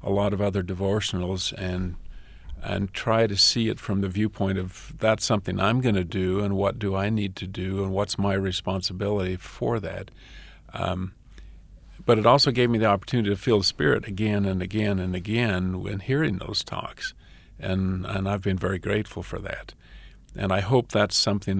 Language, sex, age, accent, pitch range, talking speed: English, male, 50-69, American, 95-105 Hz, 190 wpm